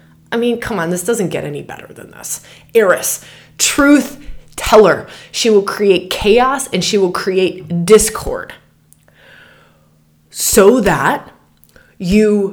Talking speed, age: 125 wpm, 20-39